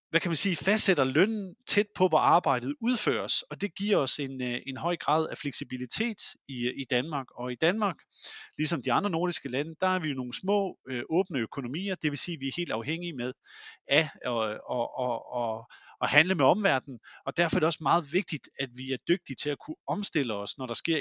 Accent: Danish